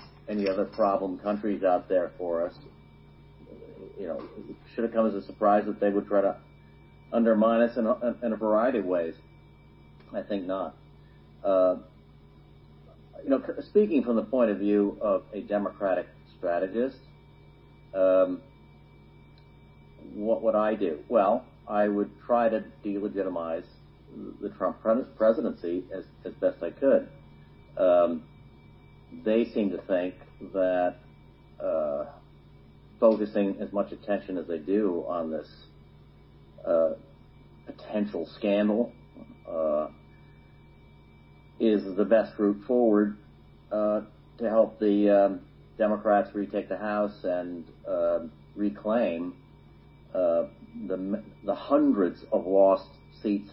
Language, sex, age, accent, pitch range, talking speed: English, male, 50-69, American, 95-110 Hz, 125 wpm